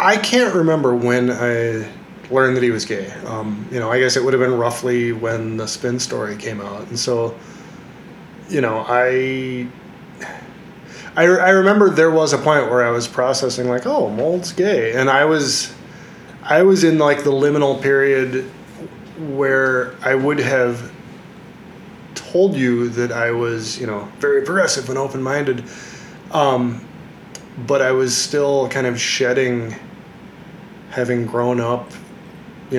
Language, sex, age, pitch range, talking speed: English, male, 20-39, 125-170 Hz, 145 wpm